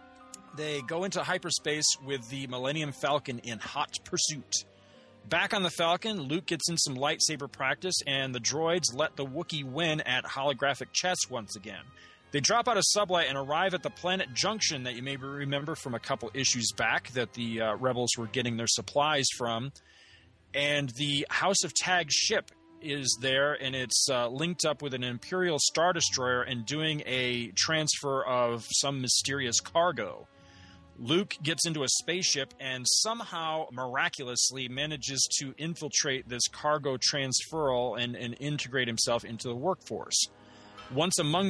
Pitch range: 125-160 Hz